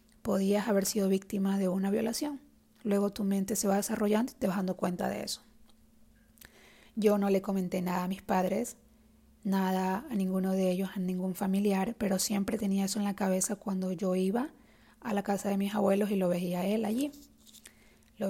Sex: female